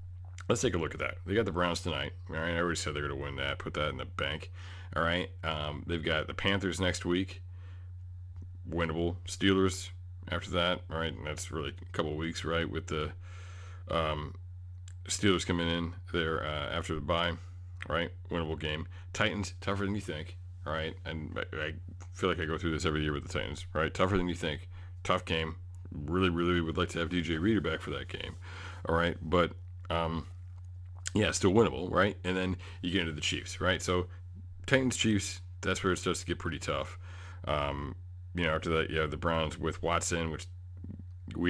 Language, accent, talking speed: English, American, 205 wpm